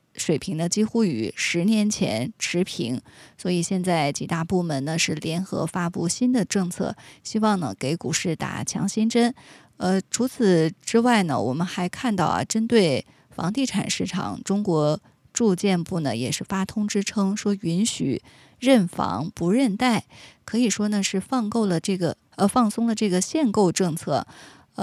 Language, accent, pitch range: Chinese, native, 175-220 Hz